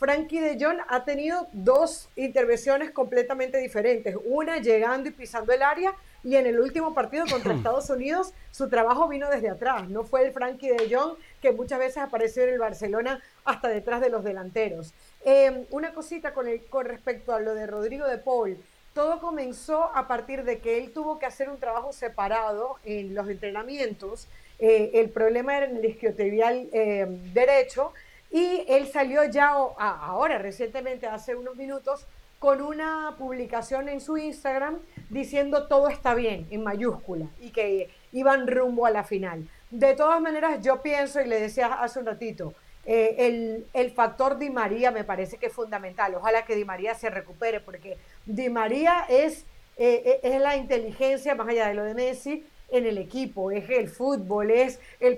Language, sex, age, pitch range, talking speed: Spanish, female, 40-59, 225-275 Hz, 175 wpm